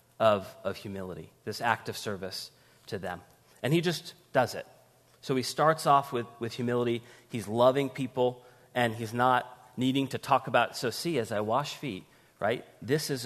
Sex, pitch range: male, 110-135 Hz